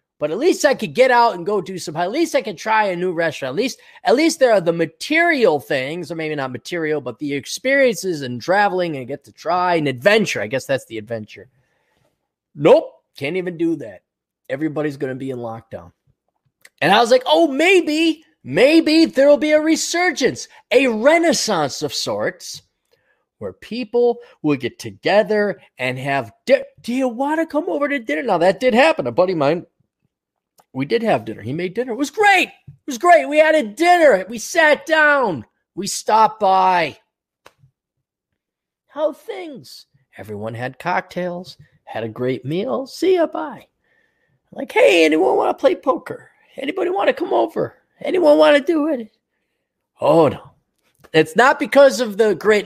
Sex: male